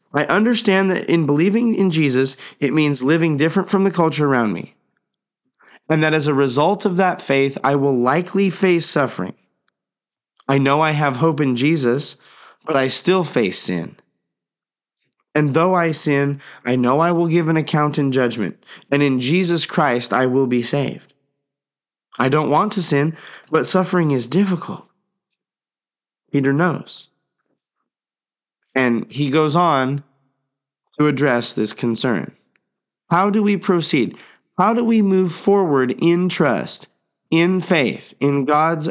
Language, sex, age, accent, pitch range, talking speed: English, male, 30-49, American, 125-170 Hz, 150 wpm